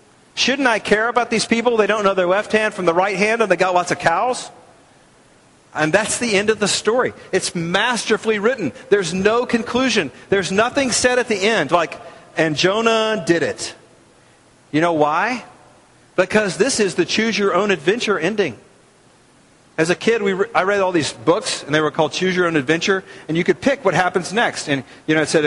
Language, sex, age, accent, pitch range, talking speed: English, male, 40-59, American, 160-220 Hz, 195 wpm